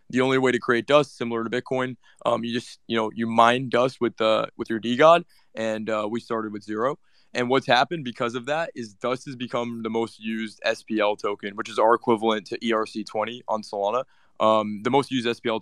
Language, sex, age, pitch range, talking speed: English, male, 20-39, 110-125 Hz, 225 wpm